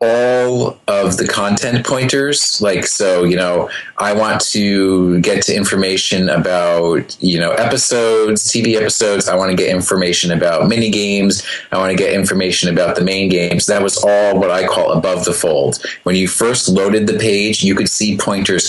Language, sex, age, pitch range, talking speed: English, male, 30-49, 90-110 Hz, 185 wpm